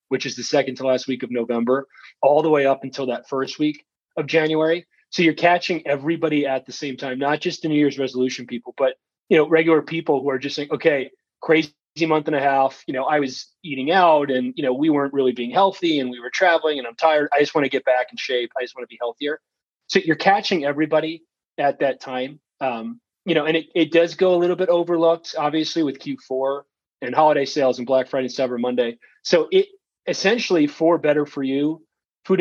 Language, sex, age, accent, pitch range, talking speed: English, male, 30-49, American, 135-165 Hz, 230 wpm